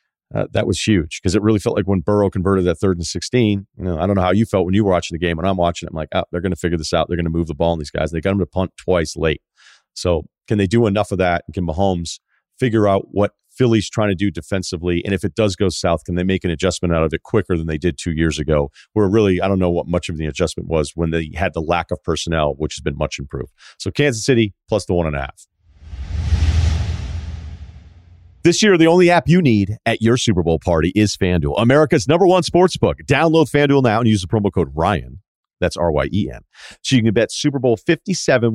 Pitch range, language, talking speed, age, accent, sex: 85-115 Hz, English, 260 wpm, 40-59, American, male